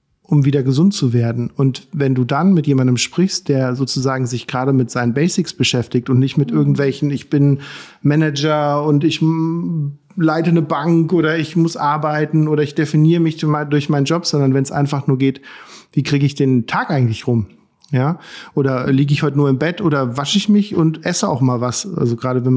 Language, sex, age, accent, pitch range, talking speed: German, male, 40-59, German, 130-155 Hz, 200 wpm